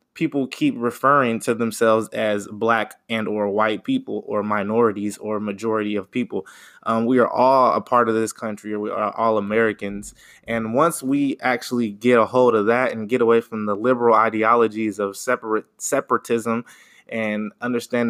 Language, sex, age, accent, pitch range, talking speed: English, male, 20-39, American, 110-125 Hz, 170 wpm